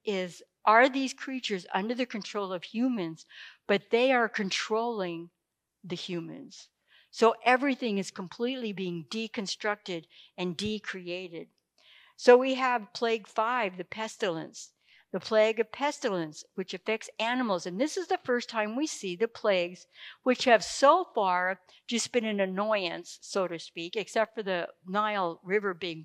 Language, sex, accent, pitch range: English, female, American, 190-235 Hz